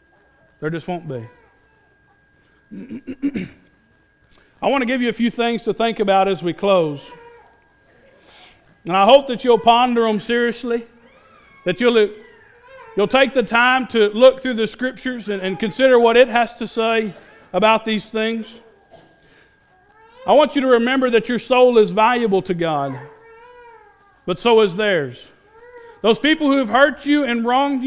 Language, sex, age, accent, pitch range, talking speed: English, male, 40-59, American, 185-275 Hz, 155 wpm